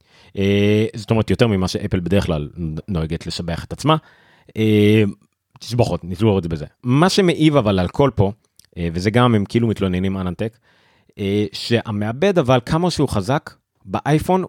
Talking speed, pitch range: 155 wpm, 95-125 Hz